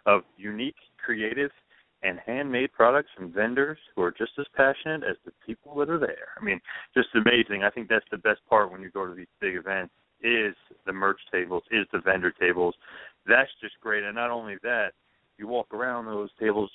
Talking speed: 200 wpm